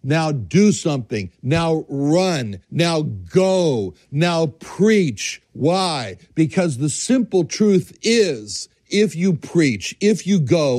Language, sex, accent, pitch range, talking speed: English, male, American, 130-185 Hz, 115 wpm